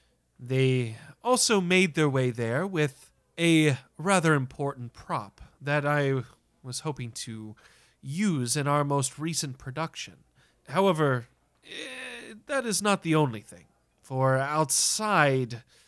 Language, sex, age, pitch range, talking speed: English, male, 30-49, 120-155 Hz, 120 wpm